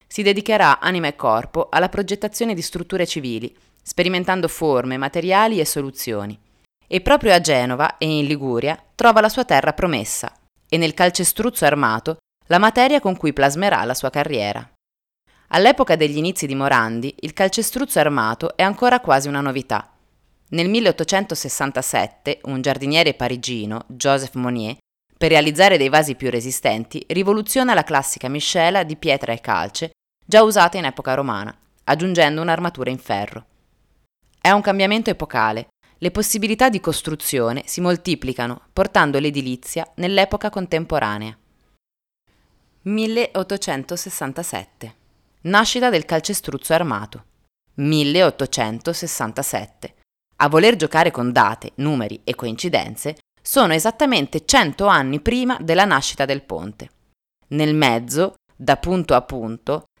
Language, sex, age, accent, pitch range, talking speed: Italian, female, 20-39, native, 130-185 Hz, 125 wpm